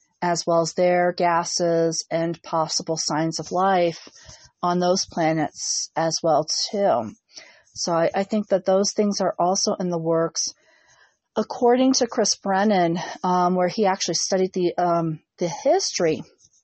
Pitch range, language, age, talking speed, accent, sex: 170-200 Hz, English, 40-59, 145 wpm, American, female